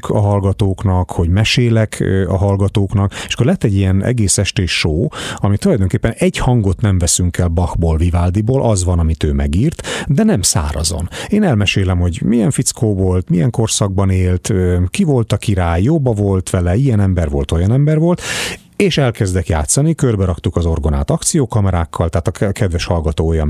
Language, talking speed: Hungarian, 170 wpm